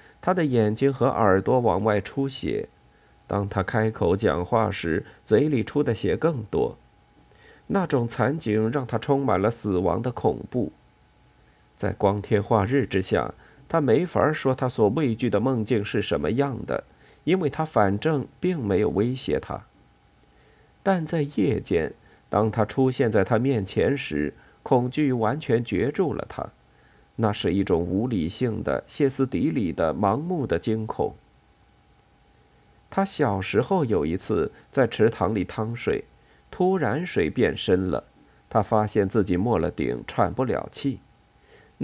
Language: Chinese